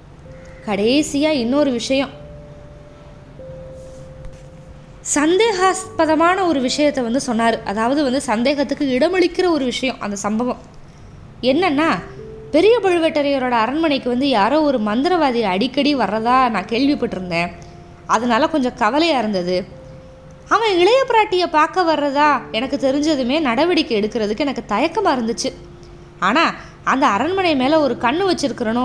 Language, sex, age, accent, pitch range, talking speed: Tamil, female, 20-39, native, 225-310 Hz, 100 wpm